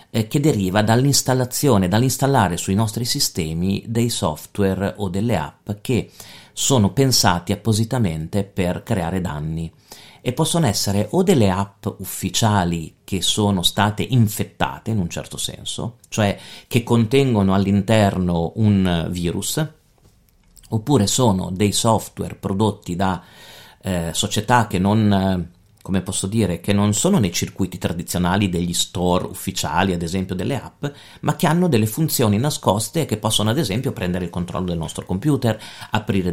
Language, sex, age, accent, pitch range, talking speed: Italian, male, 40-59, native, 95-115 Hz, 140 wpm